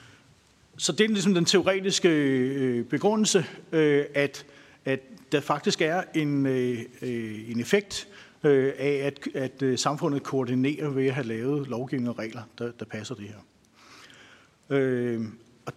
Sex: male